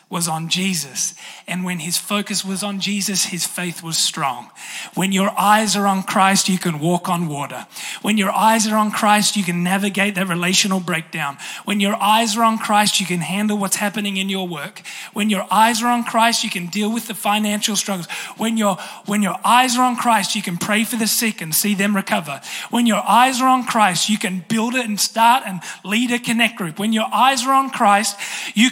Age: 20-39